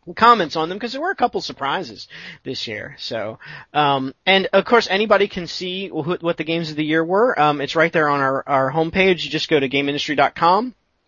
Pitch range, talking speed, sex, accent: 140-185 Hz, 210 wpm, male, American